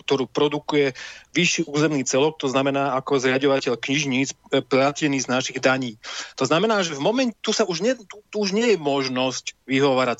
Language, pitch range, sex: Slovak, 130-160 Hz, male